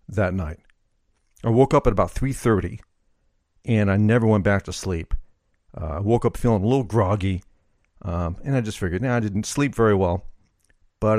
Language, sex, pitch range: English, male, 90-115 Hz